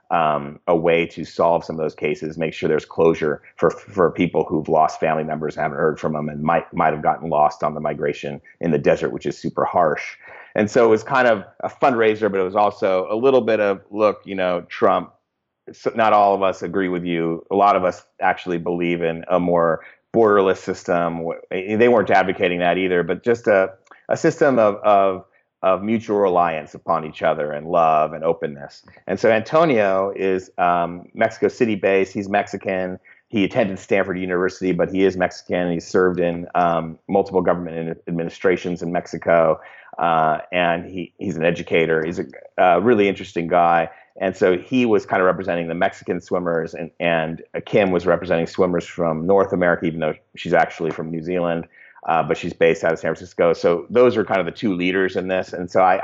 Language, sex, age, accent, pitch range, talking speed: English, male, 30-49, American, 85-95 Hz, 195 wpm